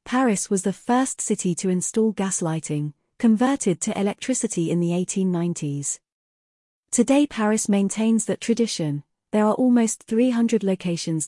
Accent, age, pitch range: British, 40-59, 170-230 Hz